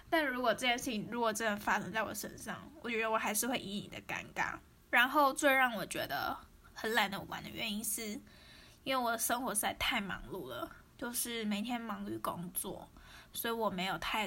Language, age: Chinese, 10-29